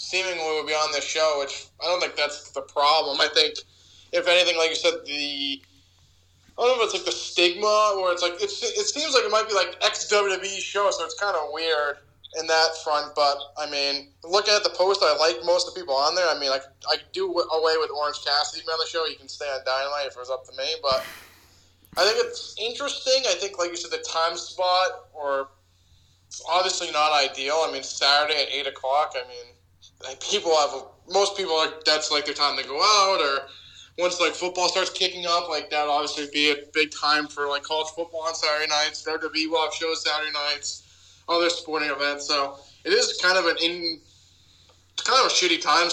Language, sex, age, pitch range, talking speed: English, male, 20-39, 145-180 Hz, 220 wpm